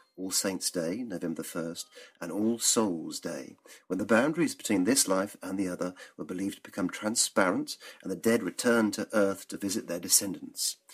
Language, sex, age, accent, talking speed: English, male, 50-69, British, 180 wpm